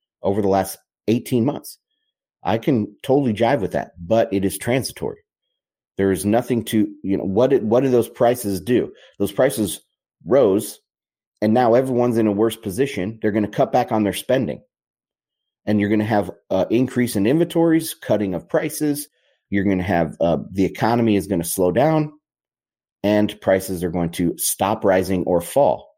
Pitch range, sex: 95-115 Hz, male